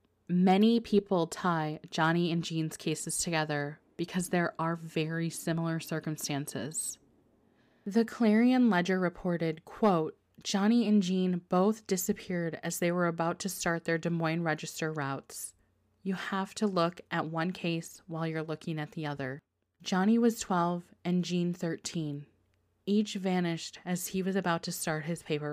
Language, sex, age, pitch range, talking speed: English, female, 20-39, 155-185 Hz, 150 wpm